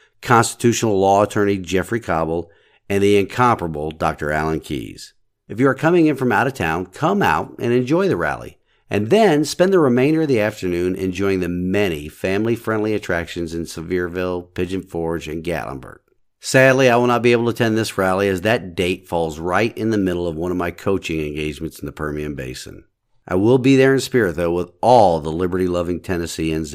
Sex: male